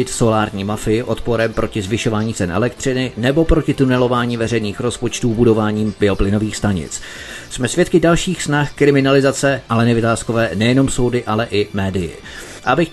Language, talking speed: Czech, 130 wpm